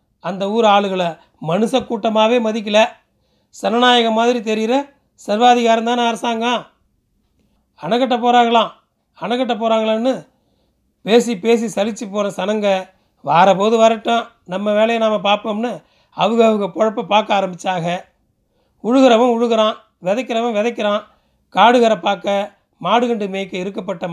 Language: Tamil